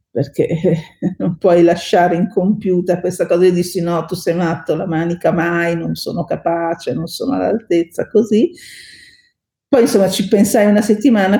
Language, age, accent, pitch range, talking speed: Italian, 50-69, native, 175-215 Hz, 155 wpm